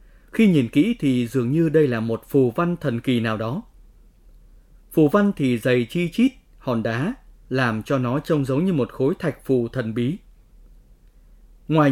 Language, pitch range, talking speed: Vietnamese, 125-175 Hz, 180 wpm